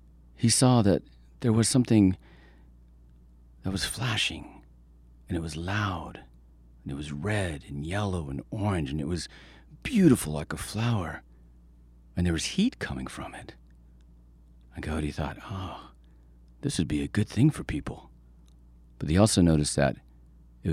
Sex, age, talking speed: male, 40-59, 155 wpm